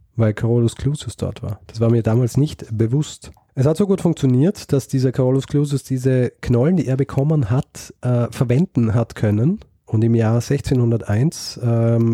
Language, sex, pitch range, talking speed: German, male, 110-135 Hz, 175 wpm